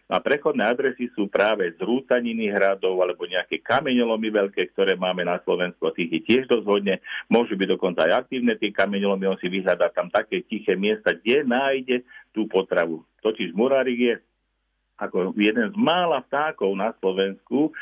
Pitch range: 95-125 Hz